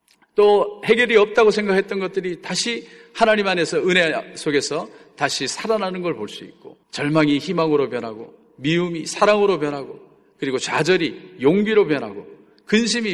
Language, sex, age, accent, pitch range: Korean, male, 40-59, native, 145-210 Hz